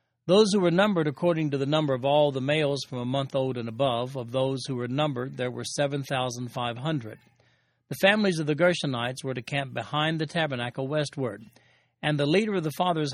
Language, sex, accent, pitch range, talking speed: English, male, American, 125-155 Hz, 215 wpm